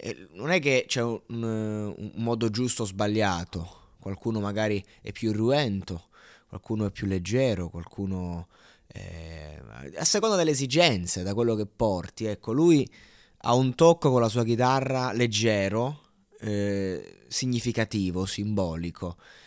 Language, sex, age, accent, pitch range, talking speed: Italian, male, 20-39, native, 100-125 Hz, 135 wpm